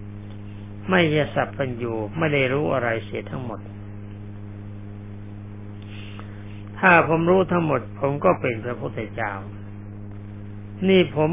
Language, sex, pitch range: Thai, male, 105-140 Hz